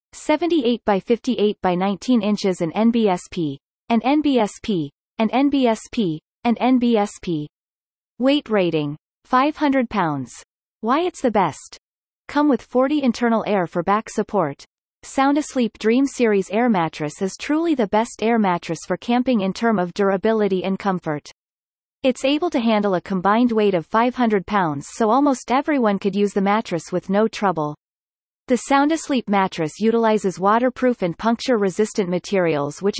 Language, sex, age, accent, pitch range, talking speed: English, female, 30-49, American, 185-245 Hz, 140 wpm